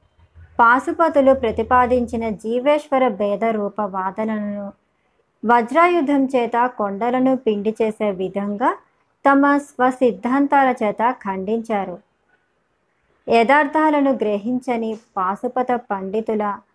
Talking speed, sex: 70 wpm, male